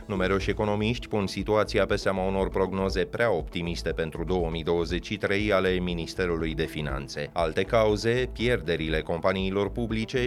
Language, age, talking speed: Romanian, 30-49, 125 wpm